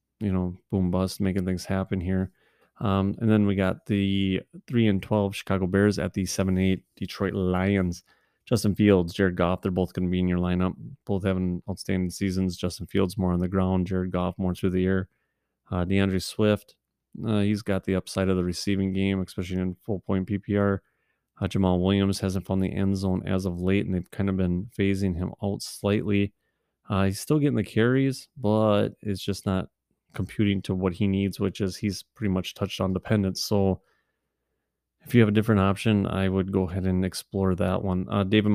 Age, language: 30-49, English